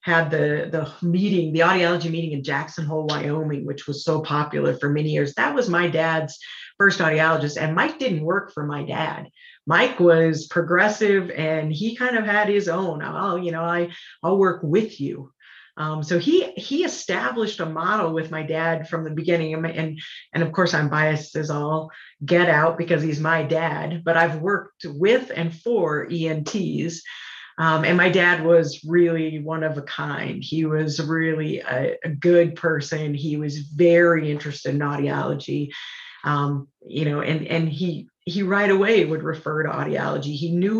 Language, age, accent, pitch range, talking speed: English, 50-69, American, 155-175 Hz, 180 wpm